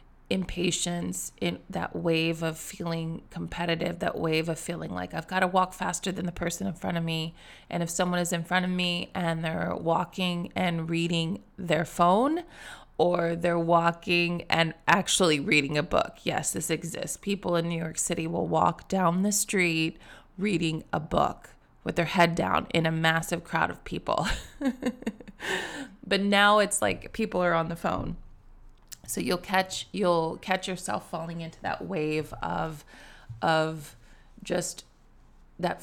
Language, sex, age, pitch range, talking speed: English, female, 20-39, 165-185 Hz, 160 wpm